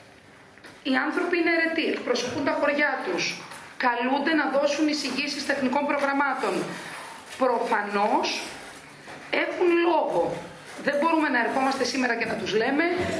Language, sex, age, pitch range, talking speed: Greek, female, 30-49, 235-290 Hz, 120 wpm